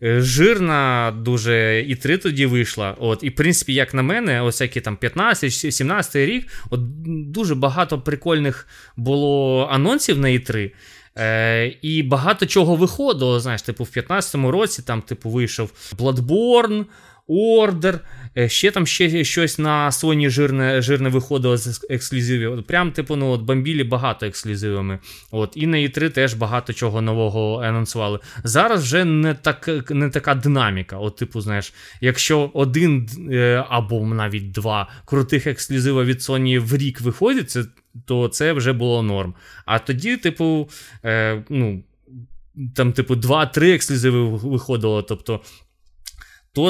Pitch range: 115-150 Hz